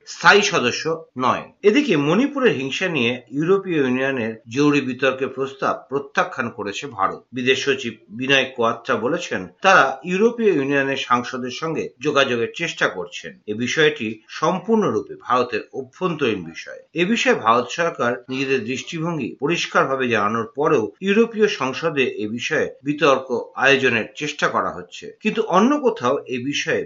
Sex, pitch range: male, 120-160 Hz